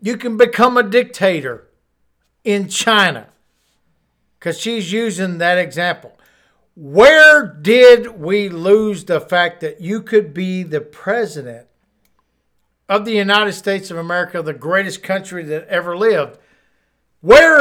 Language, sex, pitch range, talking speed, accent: English, male, 160-215 Hz, 125 wpm, American